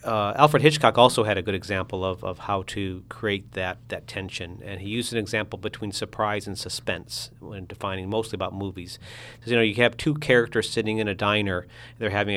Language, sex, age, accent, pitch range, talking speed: English, male, 40-59, American, 100-120 Hz, 210 wpm